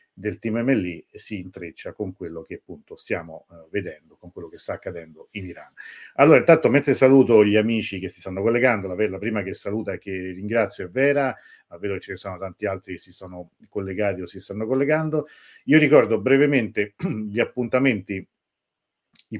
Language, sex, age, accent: Italian, male, 40-59, native